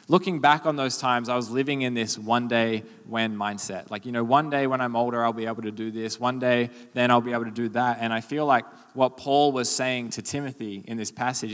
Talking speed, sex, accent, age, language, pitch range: 260 wpm, male, Australian, 20-39, English, 110-125 Hz